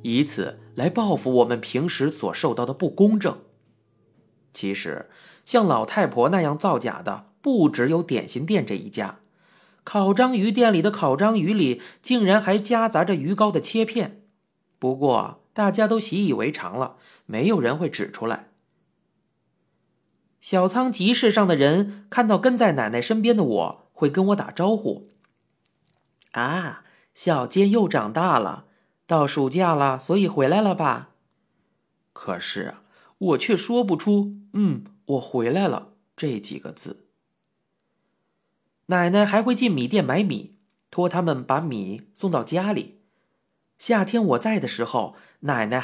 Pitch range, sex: 145-215 Hz, male